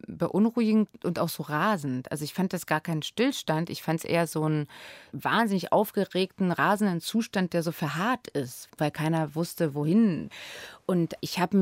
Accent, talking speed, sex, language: German, 170 wpm, female, German